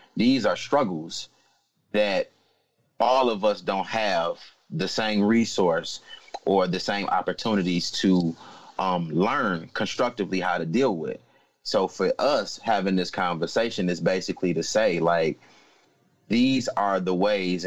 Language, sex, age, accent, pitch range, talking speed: English, male, 30-49, American, 90-115 Hz, 130 wpm